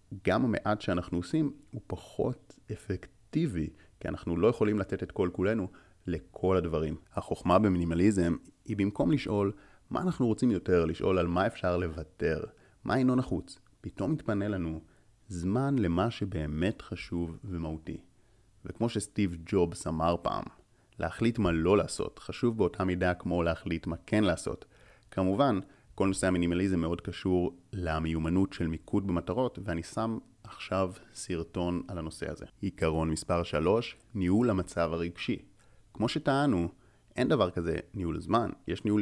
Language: Hebrew